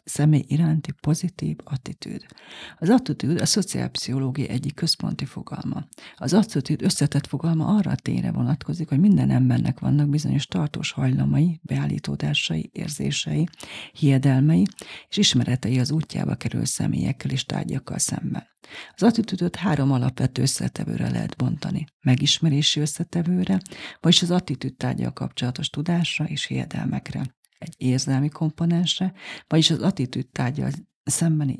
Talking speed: 120 wpm